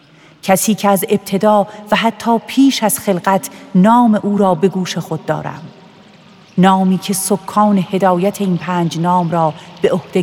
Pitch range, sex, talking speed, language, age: 170-205 Hz, female, 155 wpm, Persian, 40-59